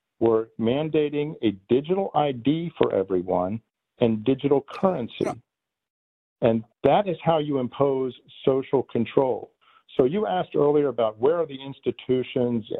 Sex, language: male, English